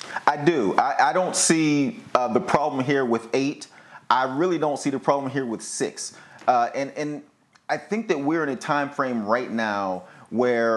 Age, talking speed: 30-49, 195 wpm